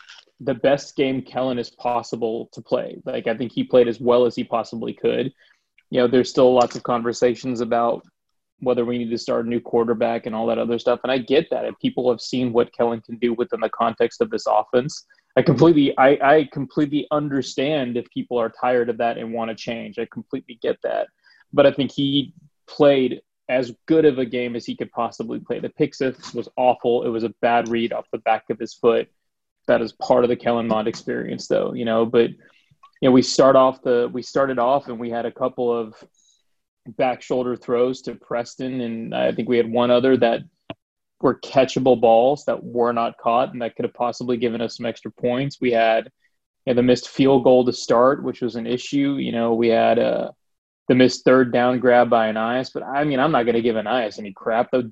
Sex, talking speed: male, 225 wpm